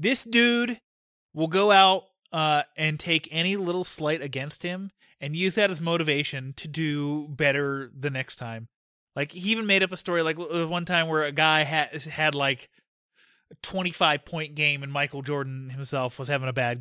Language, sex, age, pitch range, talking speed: English, male, 20-39, 140-180 Hz, 185 wpm